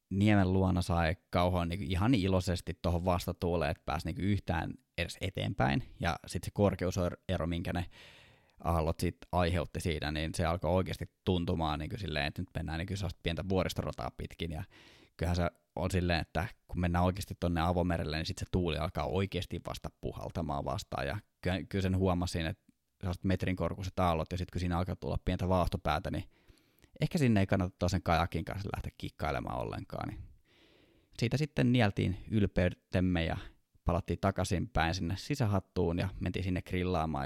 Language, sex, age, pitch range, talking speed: Finnish, male, 20-39, 85-95 Hz, 165 wpm